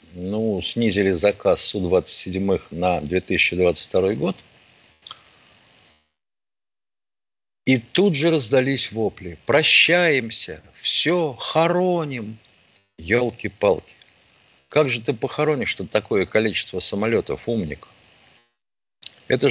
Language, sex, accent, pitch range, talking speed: Russian, male, native, 95-125 Hz, 80 wpm